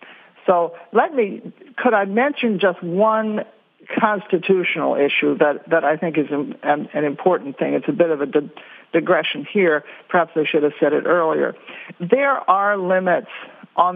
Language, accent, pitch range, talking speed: English, American, 155-200 Hz, 160 wpm